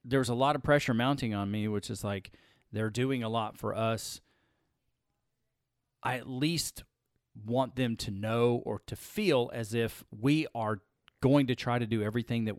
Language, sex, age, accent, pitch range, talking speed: English, male, 40-59, American, 110-140 Hz, 185 wpm